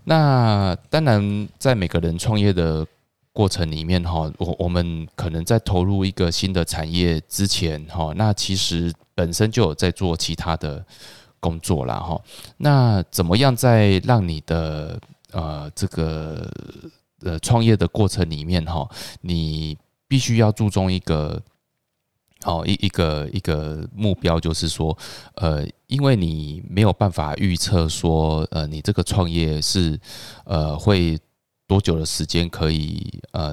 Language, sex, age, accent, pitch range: Chinese, male, 20-39, native, 80-95 Hz